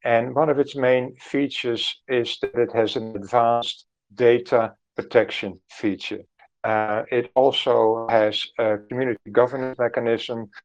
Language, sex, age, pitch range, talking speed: English, male, 50-69, 105-130 Hz, 130 wpm